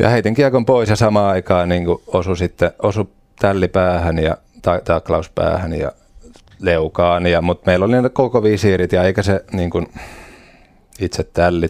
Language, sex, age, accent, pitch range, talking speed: Finnish, male, 30-49, native, 85-100 Hz, 140 wpm